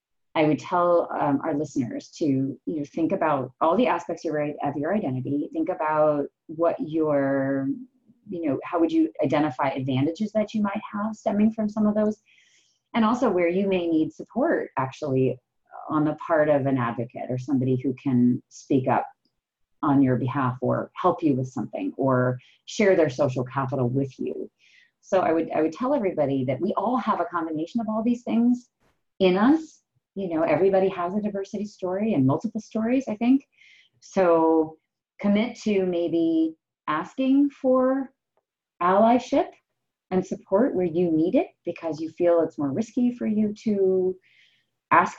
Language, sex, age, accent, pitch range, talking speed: English, female, 30-49, American, 140-210 Hz, 165 wpm